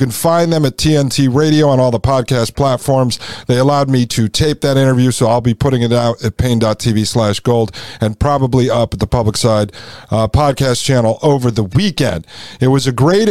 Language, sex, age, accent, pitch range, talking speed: English, male, 50-69, American, 125-170 Hz, 205 wpm